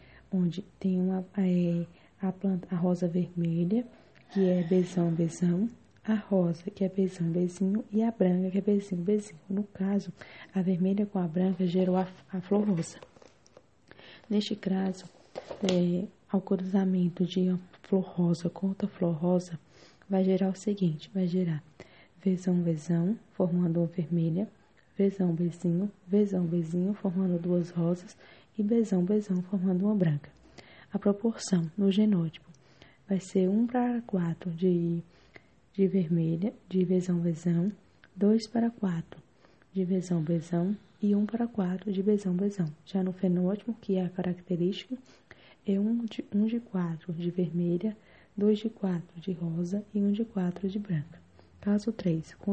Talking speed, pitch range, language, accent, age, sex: 150 wpm, 175-200 Hz, English, Brazilian, 20-39, female